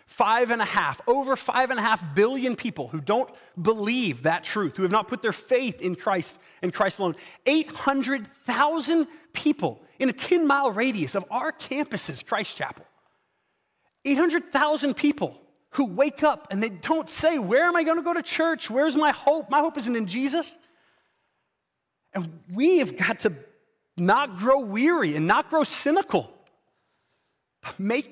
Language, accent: English, American